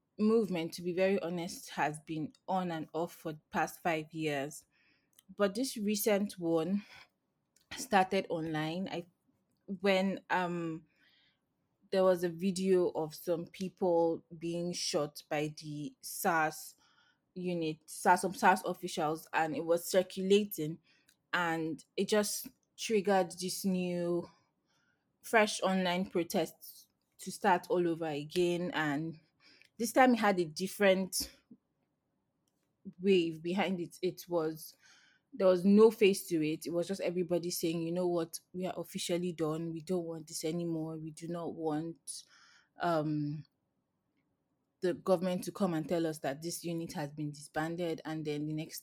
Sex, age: female, 20-39